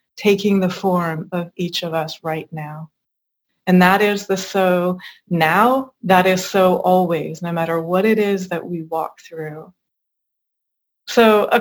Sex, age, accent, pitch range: female, 20-39, American, 180-215 Hz